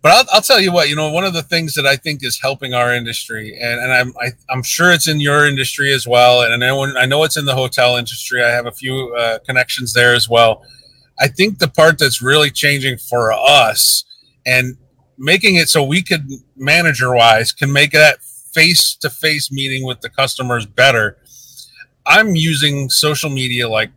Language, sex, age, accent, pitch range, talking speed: English, male, 40-59, American, 130-175 Hz, 200 wpm